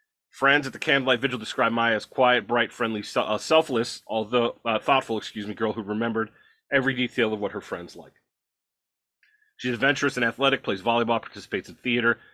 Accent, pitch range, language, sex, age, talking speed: American, 115-135 Hz, English, male, 30-49, 180 wpm